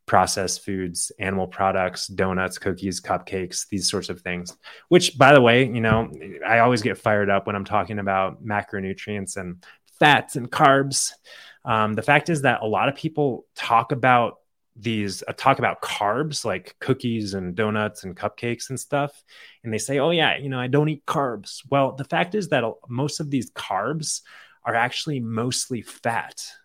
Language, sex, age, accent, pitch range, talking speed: English, male, 20-39, American, 105-140 Hz, 180 wpm